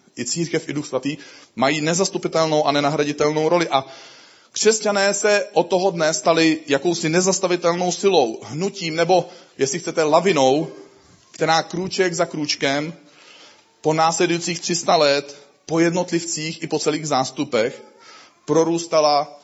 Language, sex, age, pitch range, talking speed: Czech, male, 30-49, 140-175 Hz, 125 wpm